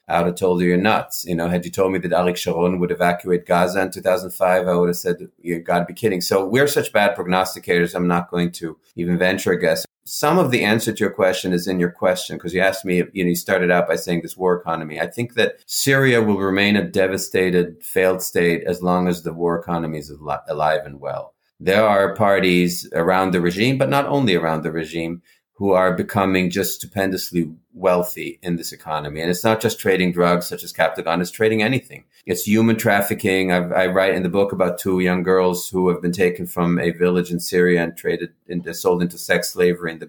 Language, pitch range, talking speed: English, 85-95 Hz, 230 wpm